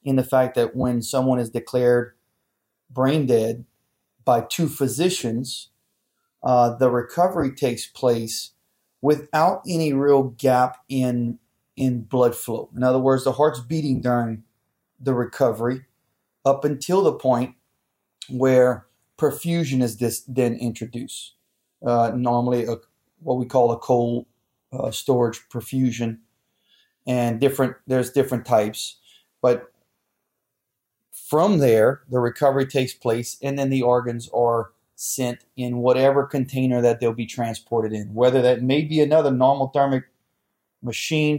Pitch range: 115-135 Hz